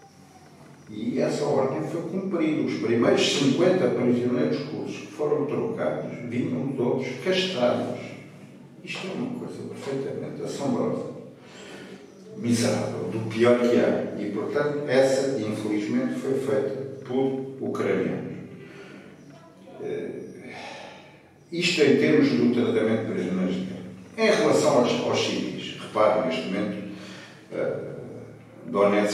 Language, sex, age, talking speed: Portuguese, male, 50-69, 105 wpm